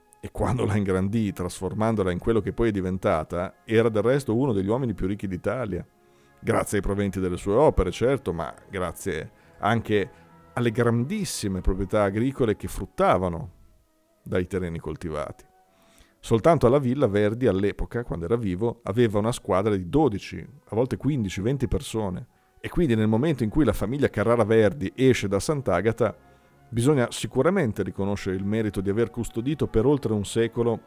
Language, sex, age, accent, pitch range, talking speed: Italian, male, 40-59, native, 95-115 Hz, 160 wpm